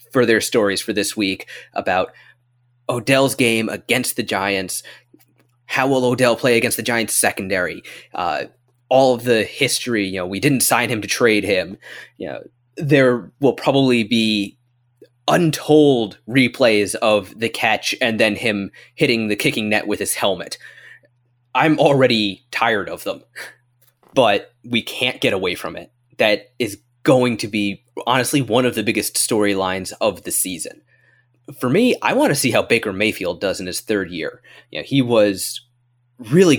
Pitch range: 105-125 Hz